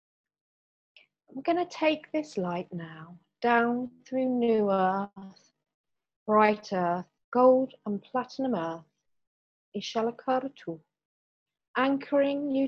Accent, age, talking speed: British, 40-59, 90 wpm